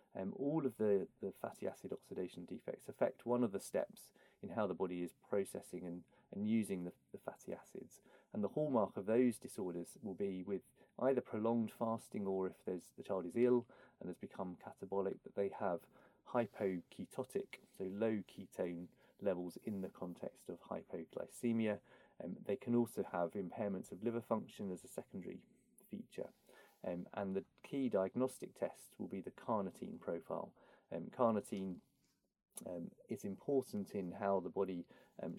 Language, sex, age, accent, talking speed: English, male, 30-49, British, 170 wpm